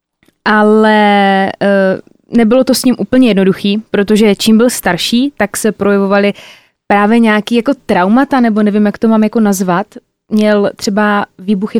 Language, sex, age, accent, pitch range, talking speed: Czech, female, 20-39, native, 185-215 Hz, 145 wpm